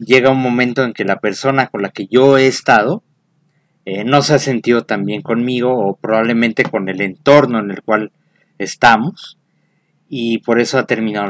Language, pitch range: Spanish, 110-145 Hz